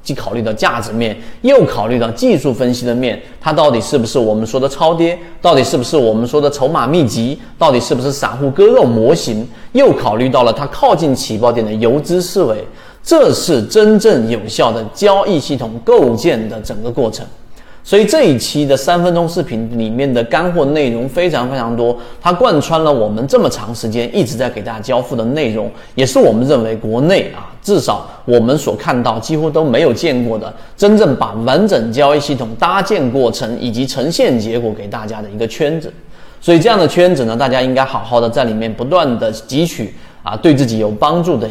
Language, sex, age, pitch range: Chinese, male, 30-49, 115-155 Hz